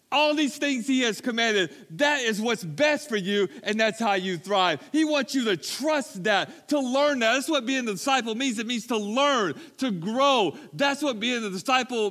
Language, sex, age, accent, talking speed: English, male, 40-59, American, 215 wpm